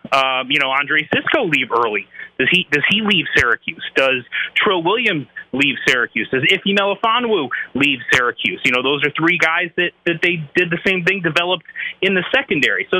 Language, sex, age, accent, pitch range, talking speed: English, male, 30-49, American, 135-185 Hz, 190 wpm